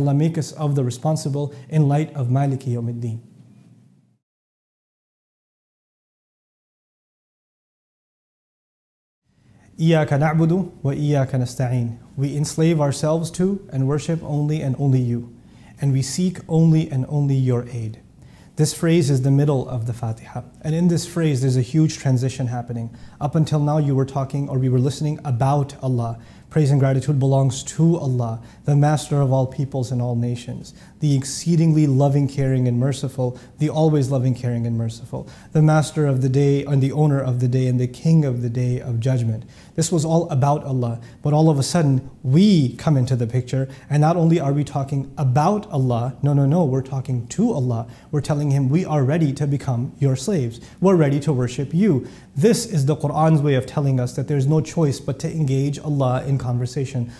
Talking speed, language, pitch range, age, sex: 175 wpm, English, 130-155 Hz, 20-39, male